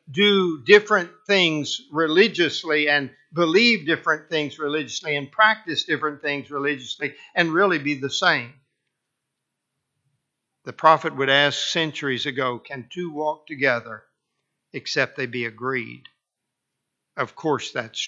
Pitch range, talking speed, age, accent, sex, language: 130-160 Hz, 120 wpm, 50-69, American, male, English